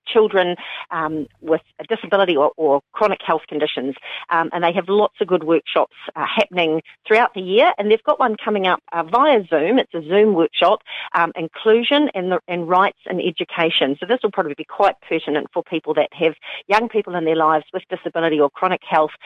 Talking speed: 205 wpm